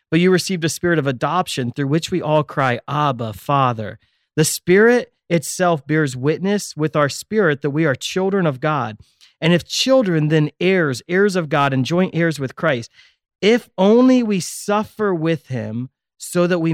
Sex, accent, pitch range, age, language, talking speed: male, American, 140-185 Hz, 30-49, English, 180 wpm